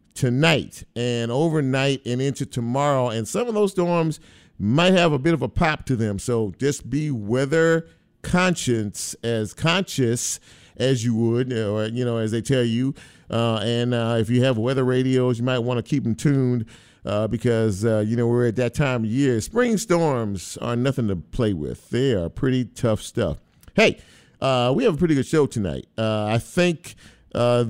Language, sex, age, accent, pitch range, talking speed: English, male, 50-69, American, 115-145 Hz, 190 wpm